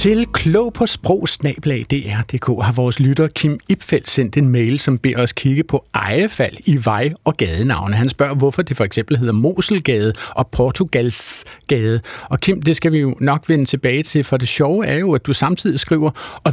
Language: Danish